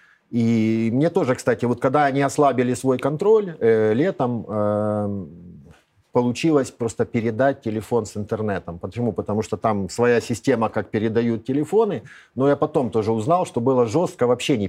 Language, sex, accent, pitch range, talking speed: Russian, male, native, 110-140 Hz, 155 wpm